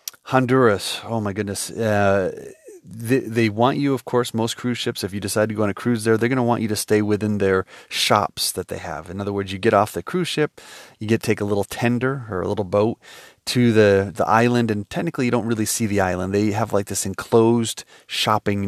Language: English